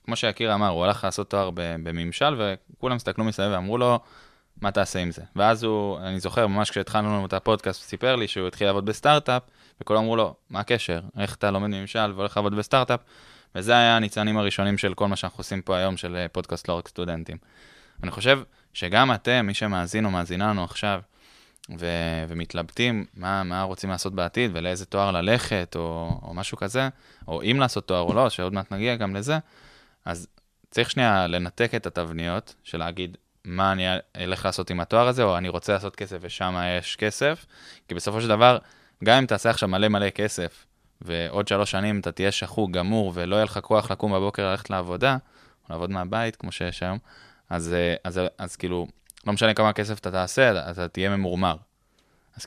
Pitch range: 90-110 Hz